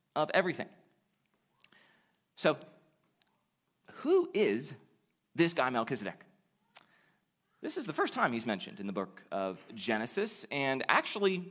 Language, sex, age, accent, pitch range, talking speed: English, male, 30-49, American, 150-225 Hz, 115 wpm